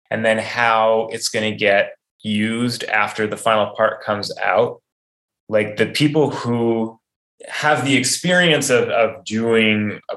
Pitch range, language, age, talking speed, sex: 100-120 Hz, English, 20-39, 150 wpm, male